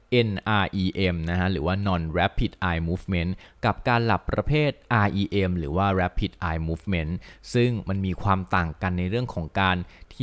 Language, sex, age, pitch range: Thai, male, 20-39, 85-110 Hz